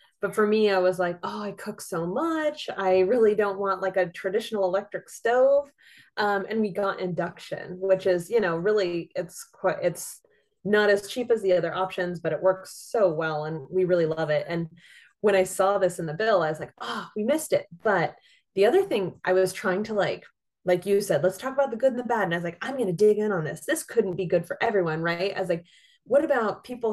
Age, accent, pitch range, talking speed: 20-39, American, 180-215 Hz, 245 wpm